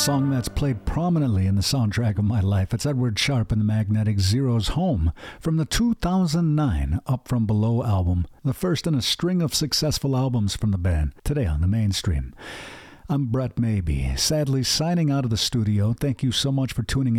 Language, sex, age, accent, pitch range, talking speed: English, male, 50-69, American, 105-135 Hz, 190 wpm